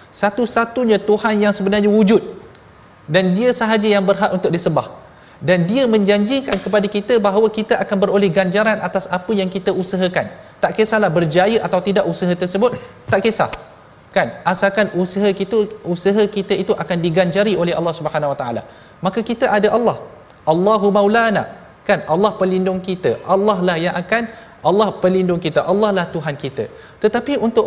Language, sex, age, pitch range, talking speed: Malayalam, male, 30-49, 165-210 Hz, 160 wpm